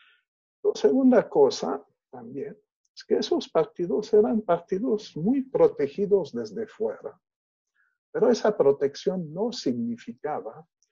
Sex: male